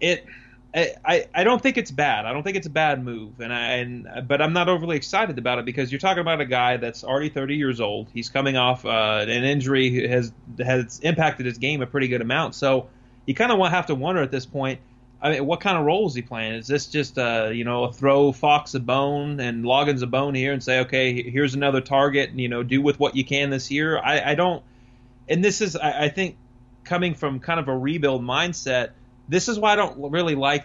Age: 30-49